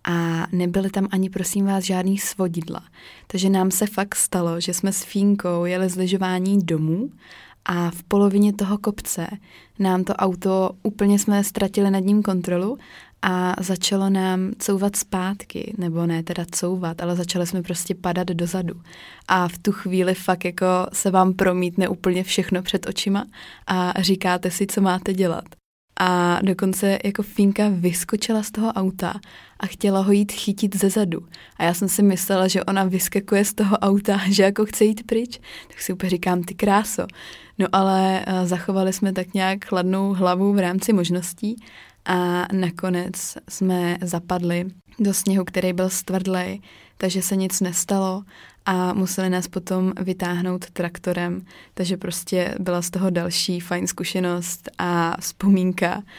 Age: 20-39